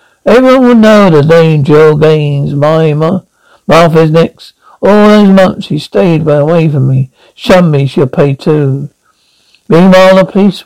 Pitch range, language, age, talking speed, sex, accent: 150-195 Hz, English, 60-79, 150 wpm, male, British